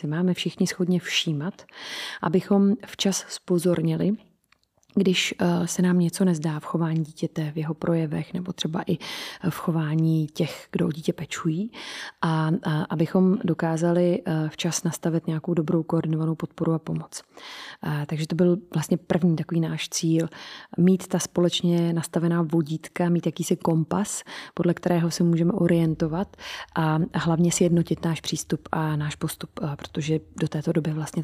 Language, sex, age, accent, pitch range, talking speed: Czech, female, 20-39, native, 160-180 Hz, 140 wpm